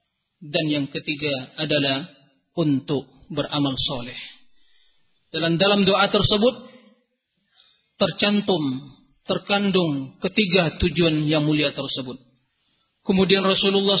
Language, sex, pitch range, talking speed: Indonesian, male, 160-200 Hz, 85 wpm